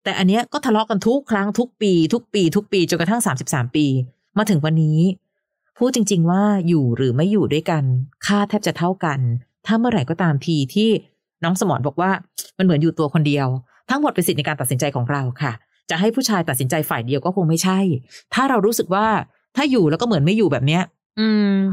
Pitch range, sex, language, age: 155-215 Hz, female, Thai, 30-49